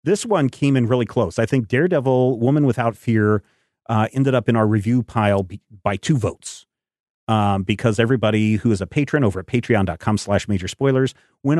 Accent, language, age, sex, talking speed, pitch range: American, English, 40-59, male, 185 wpm, 105-135 Hz